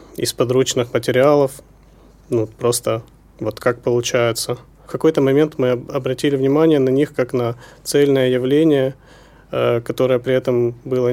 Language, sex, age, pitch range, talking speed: Ukrainian, male, 20-39, 120-135 Hz, 130 wpm